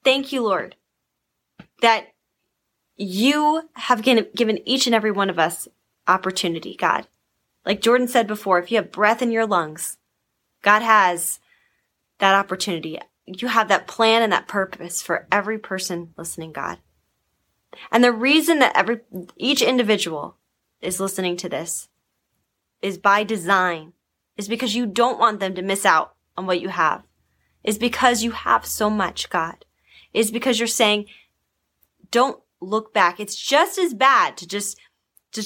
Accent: American